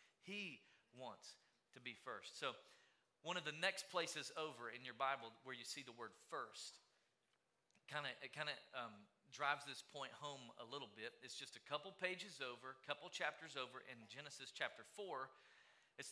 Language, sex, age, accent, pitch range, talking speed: English, male, 40-59, American, 135-195 Hz, 170 wpm